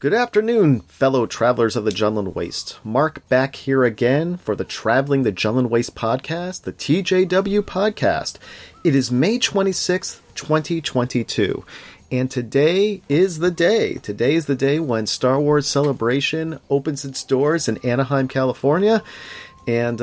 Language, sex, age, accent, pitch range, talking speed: English, male, 40-59, American, 100-135 Hz, 140 wpm